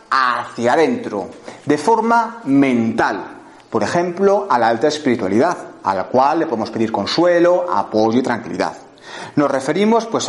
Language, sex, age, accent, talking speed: Spanish, male, 40-59, Spanish, 140 wpm